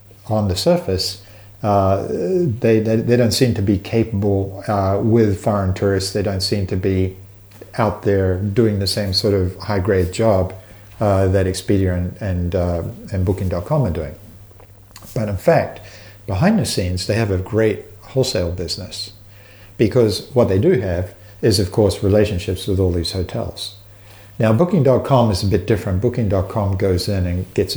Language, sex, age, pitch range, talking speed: English, male, 50-69, 95-110 Hz, 160 wpm